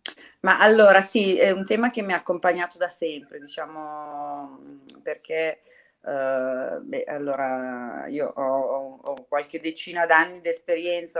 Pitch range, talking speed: 150-175 Hz, 140 wpm